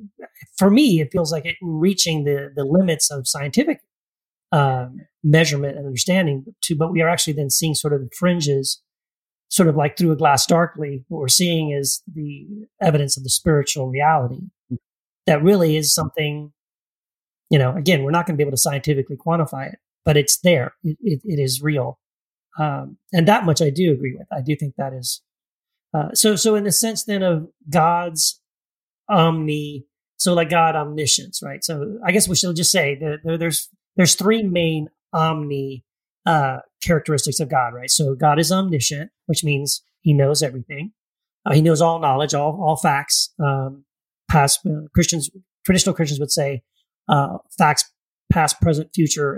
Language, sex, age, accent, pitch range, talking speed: English, male, 40-59, American, 145-170 Hz, 180 wpm